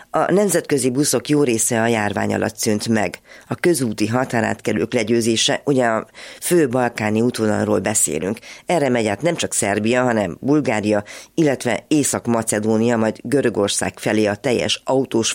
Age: 30-49